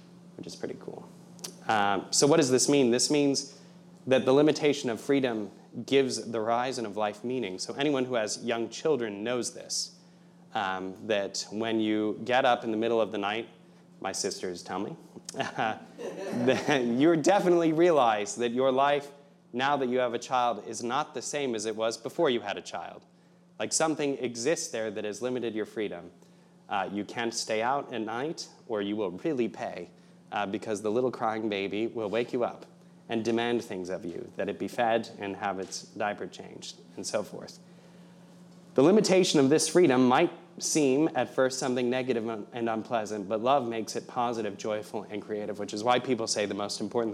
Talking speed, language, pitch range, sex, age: 190 wpm, English, 110-145 Hz, male, 30-49